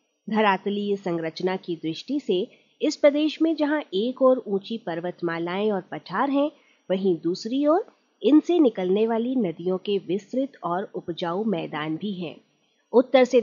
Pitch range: 180-255 Hz